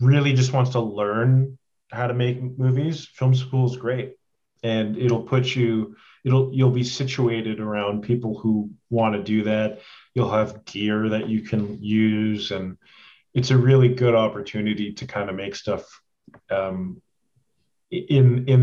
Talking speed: 155 wpm